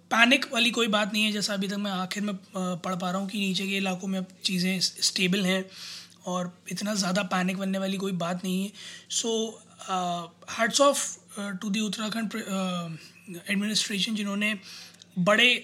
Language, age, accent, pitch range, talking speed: Hindi, 20-39, native, 180-205 Hz, 165 wpm